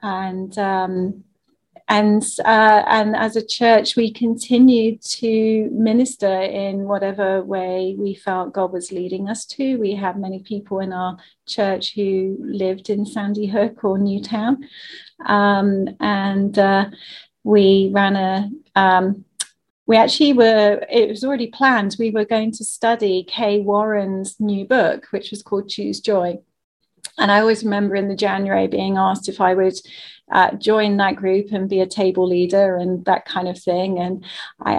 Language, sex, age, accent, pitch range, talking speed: English, female, 40-59, British, 190-220 Hz, 160 wpm